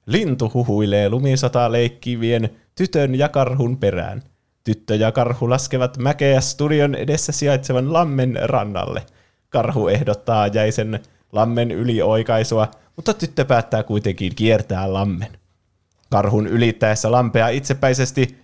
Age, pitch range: 20-39, 100-125 Hz